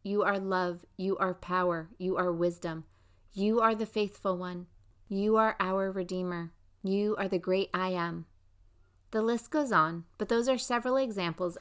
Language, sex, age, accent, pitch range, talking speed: English, female, 30-49, American, 160-215 Hz, 170 wpm